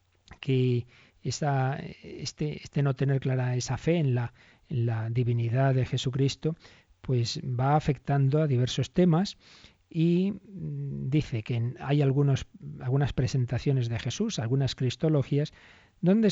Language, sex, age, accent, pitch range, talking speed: Spanish, male, 40-59, Spanish, 120-150 Hz, 125 wpm